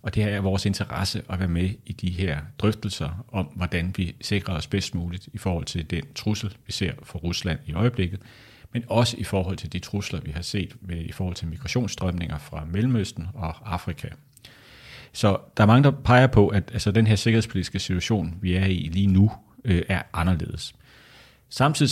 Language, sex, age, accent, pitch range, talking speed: Danish, male, 30-49, native, 90-110 Hz, 195 wpm